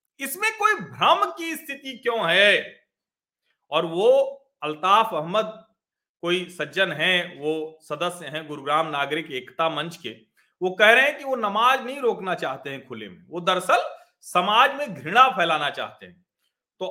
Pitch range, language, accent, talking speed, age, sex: 185-285 Hz, Hindi, native, 155 wpm, 40-59, male